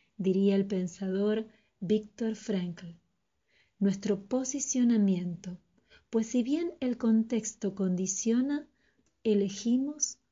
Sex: female